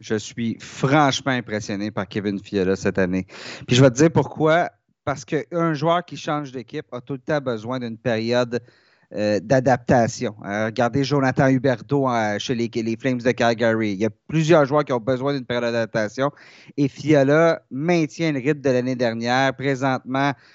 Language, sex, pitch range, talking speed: French, male, 130-170 Hz, 170 wpm